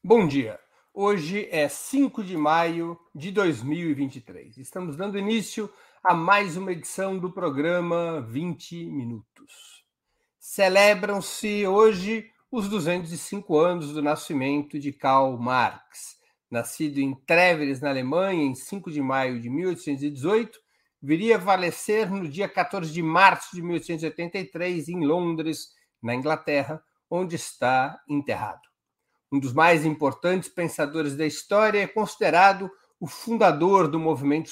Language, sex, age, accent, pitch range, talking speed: Portuguese, male, 60-79, Brazilian, 145-195 Hz, 125 wpm